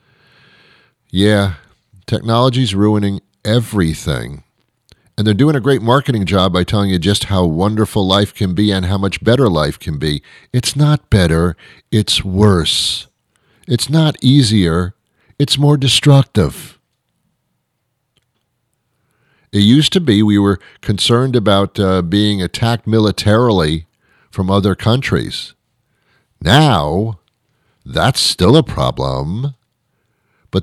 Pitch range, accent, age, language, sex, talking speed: 95-125 Hz, American, 50-69, English, male, 115 wpm